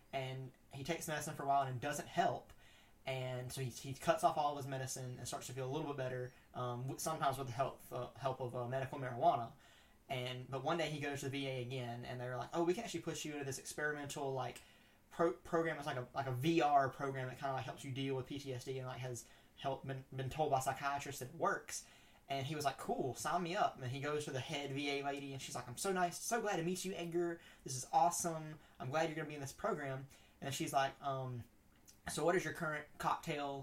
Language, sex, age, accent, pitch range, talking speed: English, male, 20-39, American, 130-155 Hz, 260 wpm